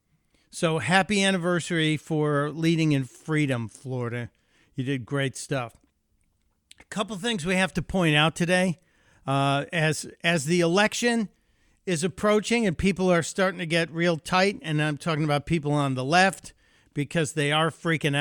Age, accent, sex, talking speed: 50-69, American, male, 160 wpm